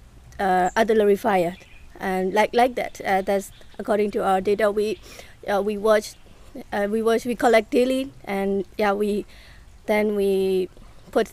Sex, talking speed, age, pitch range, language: female, 145 wpm, 20-39, 195-230 Hz, English